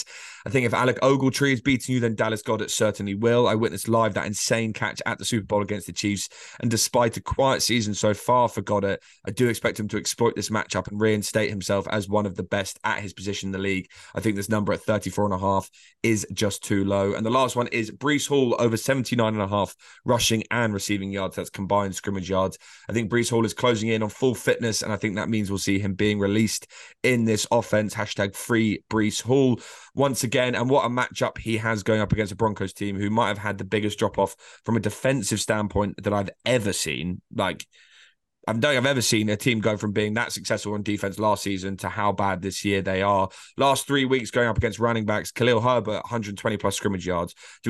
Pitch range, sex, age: 100-115 Hz, male, 20-39